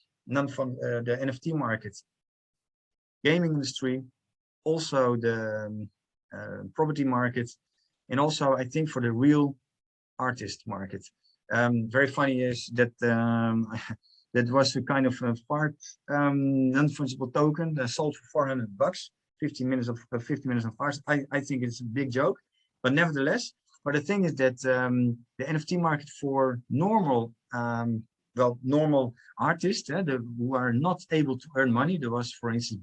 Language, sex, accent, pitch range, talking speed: English, male, Dutch, 120-145 Hz, 165 wpm